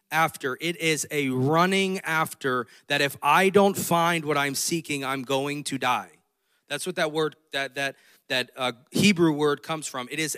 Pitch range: 140-185 Hz